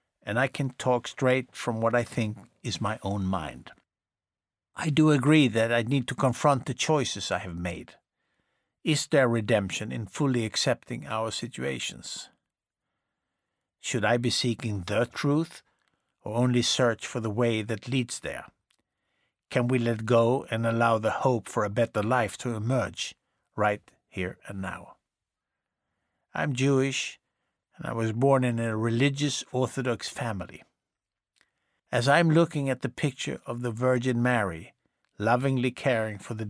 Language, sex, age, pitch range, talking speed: English, male, 60-79, 105-130 Hz, 150 wpm